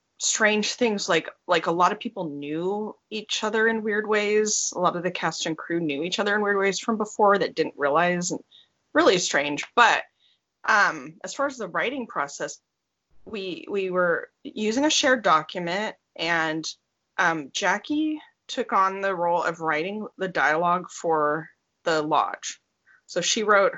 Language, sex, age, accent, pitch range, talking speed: English, female, 20-39, American, 160-215 Hz, 170 wpm